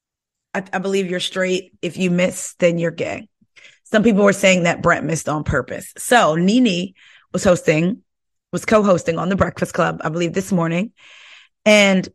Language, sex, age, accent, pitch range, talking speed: English, female, 30-49, American, 170-205 Hz, 170 wpm